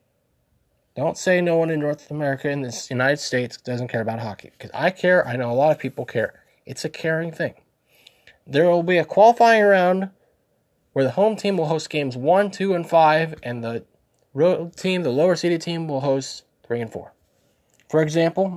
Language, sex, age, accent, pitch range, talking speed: English, male, 20-39, American, 125-170 Hz, 195 wpm